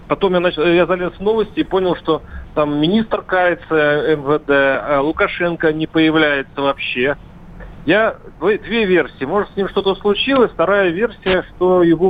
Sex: male